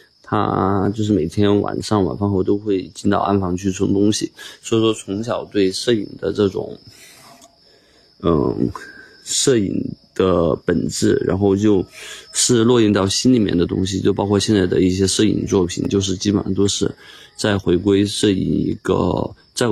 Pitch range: 95-105 Hz